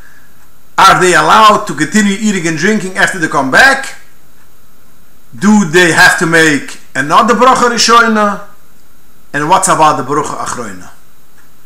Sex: male